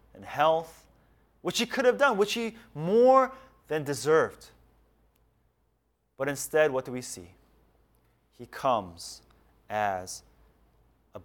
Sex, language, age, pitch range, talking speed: male, English, 30-49, 110-155 Hz, 115 wpm